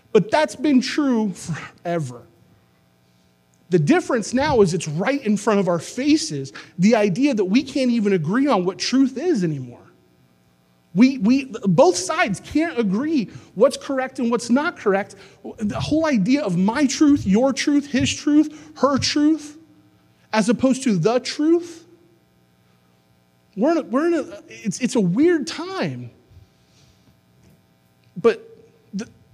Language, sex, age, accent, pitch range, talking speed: English, male, 30-49, American, 185-290 Hz, 140 wpm